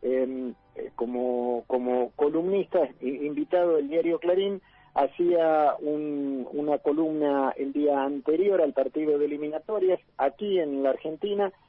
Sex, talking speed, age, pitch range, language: male, 115 wpm, 50-69, 135-185 Hz, Spanish